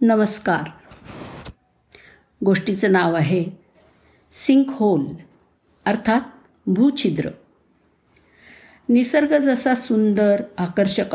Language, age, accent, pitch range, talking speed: Marathi, 50-69, native, 190-240 Hz, 65 wpm